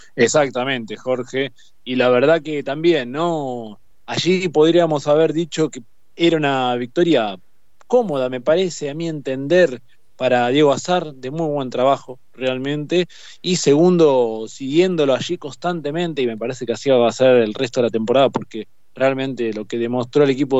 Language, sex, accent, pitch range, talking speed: Spanish, male, Argentinian, 125-160 Hz, 160 wpm